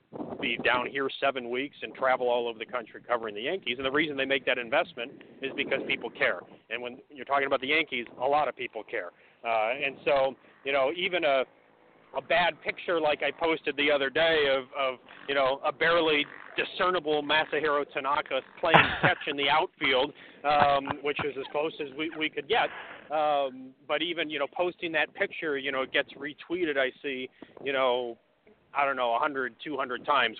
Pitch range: 120-145 Hz